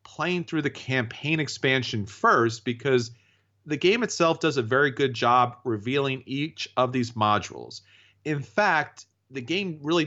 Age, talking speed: 40-59, 150 wpm